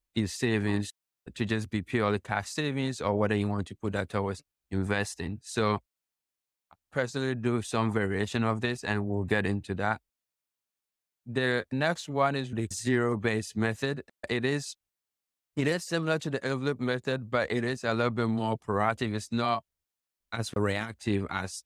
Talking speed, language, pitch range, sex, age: 165 wpm, English, 100-120 Hz, male, 20-39